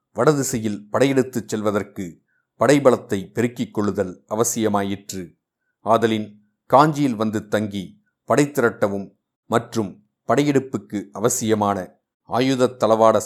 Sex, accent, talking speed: male, native, 75 wpm